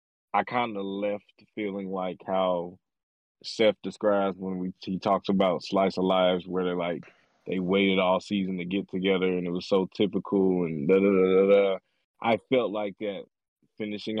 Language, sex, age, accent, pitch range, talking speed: English, male, 20-39, American, 95-115 Hz, 180 wpm